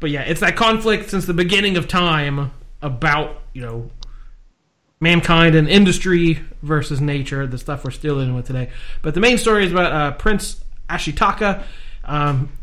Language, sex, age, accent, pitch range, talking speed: English, male, 30-49, American, 135-165 Hz, 165 wpm